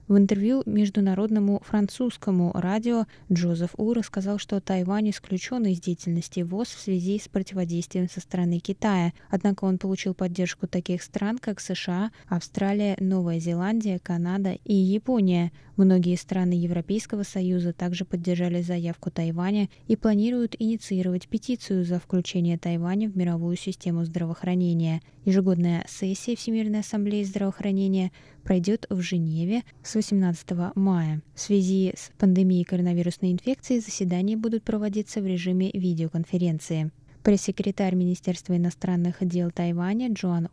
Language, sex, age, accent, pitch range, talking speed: Russian, female, 20-39, native, 175-205 Hz, 125 wpm